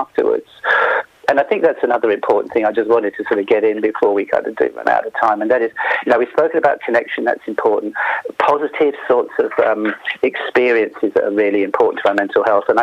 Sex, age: male, 50-69